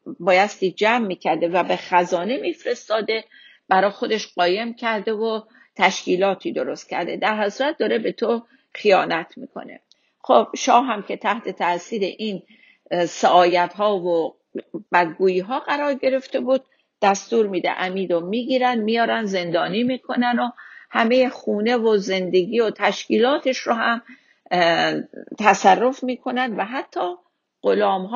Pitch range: 190-245 Hz